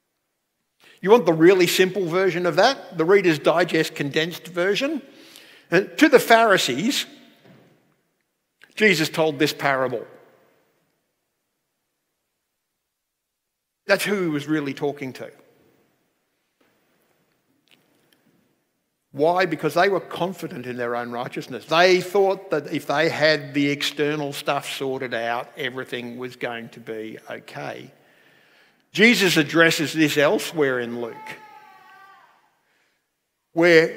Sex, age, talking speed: male, 60-79, 105 wpm